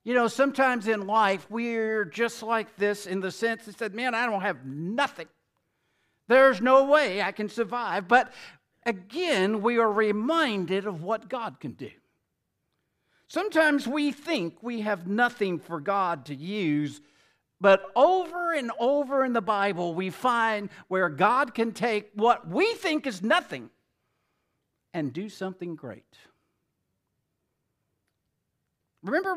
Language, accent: English, American